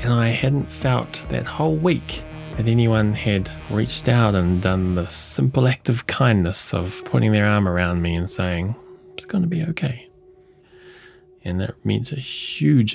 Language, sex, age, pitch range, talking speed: English, male, 20-39, 95-135 Hz, 170 wpm